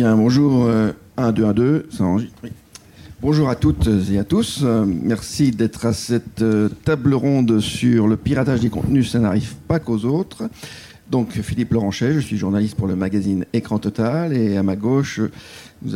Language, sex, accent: French, male, French